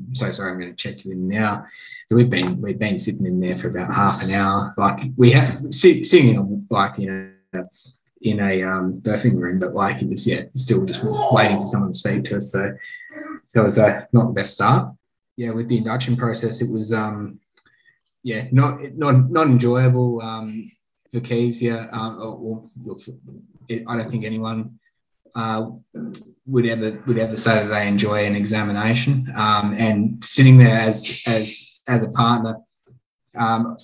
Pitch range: 105-120 Hz